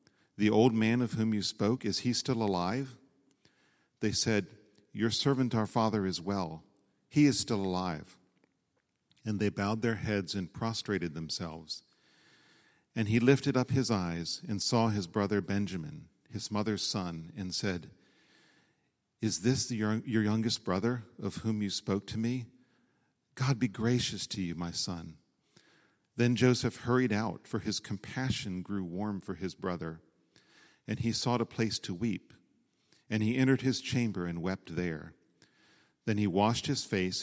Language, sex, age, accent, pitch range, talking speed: English, male, 40-59, American, 95-120 Hz, 155 wpm